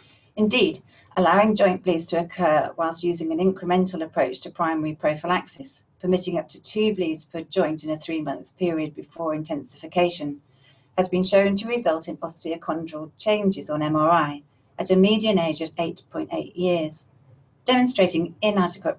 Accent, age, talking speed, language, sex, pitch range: British, 40-59, 145 wpm, English, female, 150-190 Hz